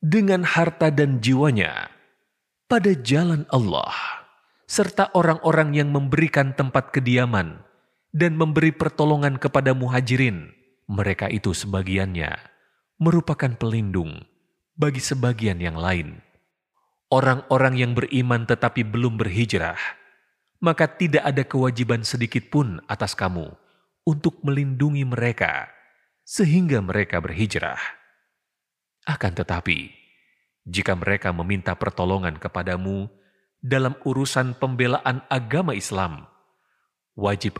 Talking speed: 95 wpm